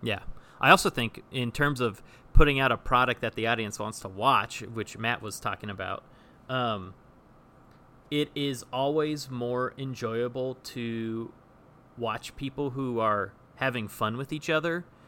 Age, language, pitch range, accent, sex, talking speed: 30-49, English, 115-135 Hz, American, male, 150 wpm